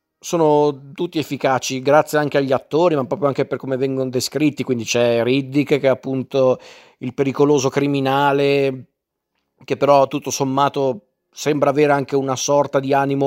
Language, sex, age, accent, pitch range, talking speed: Italian, male, 40-59, native, 130-140 Hz, 155 wpm